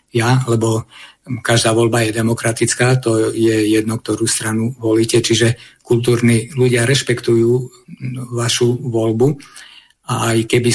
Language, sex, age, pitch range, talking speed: Slovak, male, 50-69, 115-130 Hz, 115 wpm